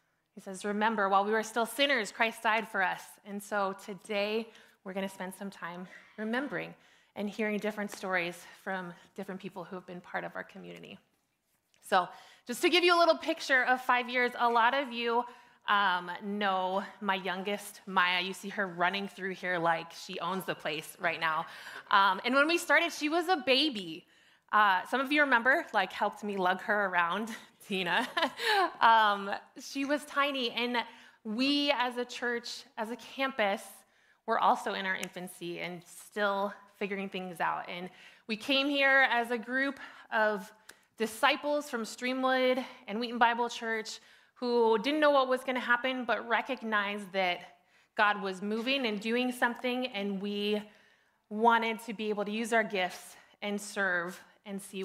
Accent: American